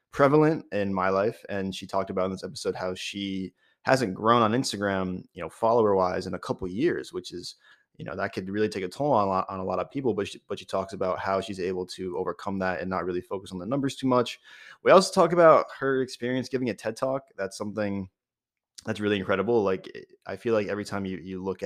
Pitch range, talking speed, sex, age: 95-115 Hz, 245 wpm, male, 20-39